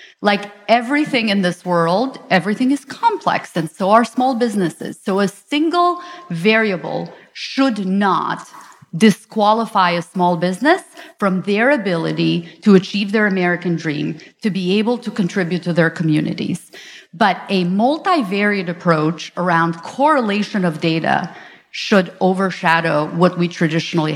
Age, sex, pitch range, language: 30-49, female, 175-230 Hz, English